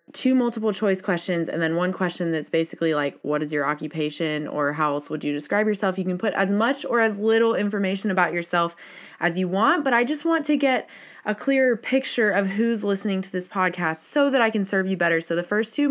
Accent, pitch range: American, 170-230 Hz